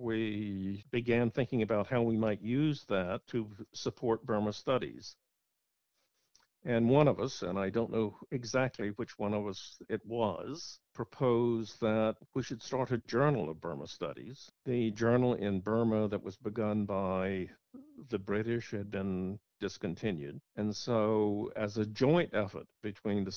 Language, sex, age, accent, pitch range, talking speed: English, male, 60-79, American, 105-125 Hz, 150 wpm